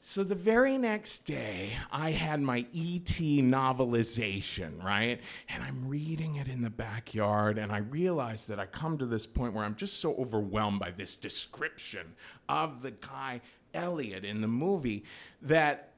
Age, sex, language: 40-59, male, English